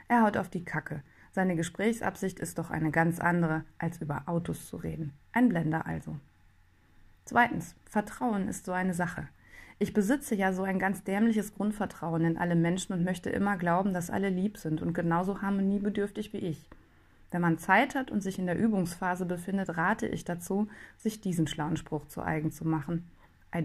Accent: German